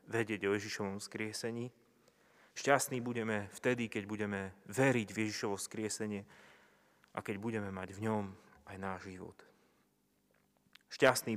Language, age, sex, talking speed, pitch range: Slovak, 30-49, male, 120 wpm, 100-115 Hz